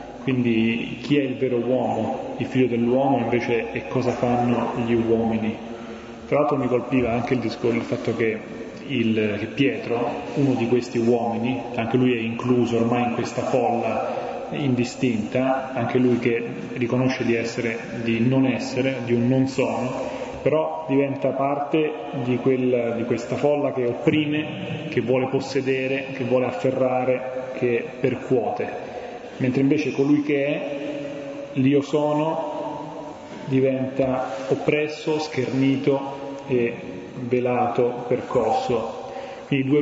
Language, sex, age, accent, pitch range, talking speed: Italian, male, 30-49, native, 120-140 Hz, 130 wpm